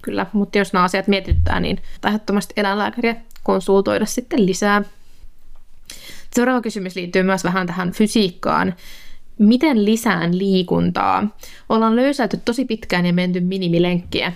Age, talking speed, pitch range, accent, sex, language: 20-39, 120 wpm, 180-215 Hz, native, female, Finnish